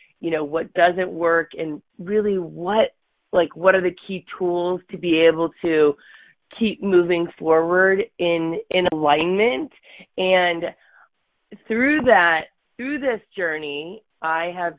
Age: 30-49